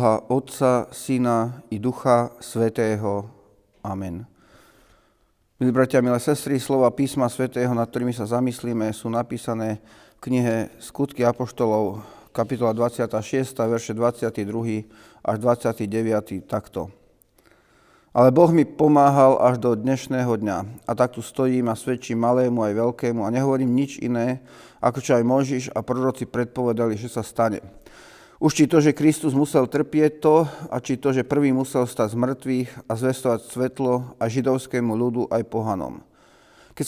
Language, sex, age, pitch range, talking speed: Slovak, male, 40-59, 115-130 Hz, 145 wpm